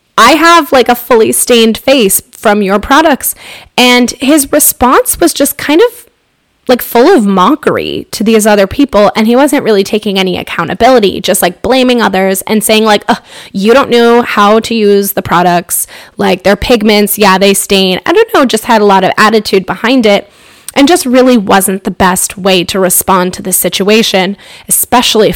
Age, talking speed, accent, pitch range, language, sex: 10-29, 180 wpm, American, 190-240 Hz, English, female